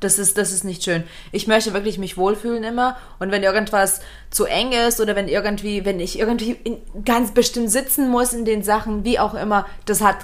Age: 20-39